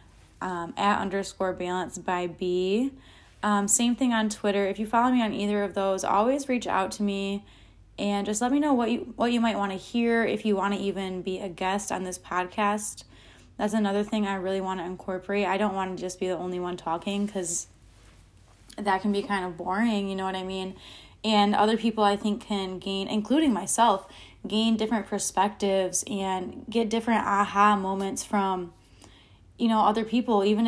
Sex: female